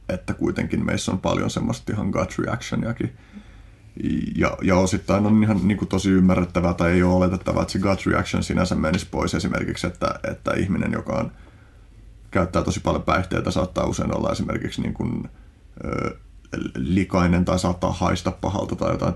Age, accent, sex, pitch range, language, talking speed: 30-49, native, male, 90-100 Hz, Finnish, 160 wpm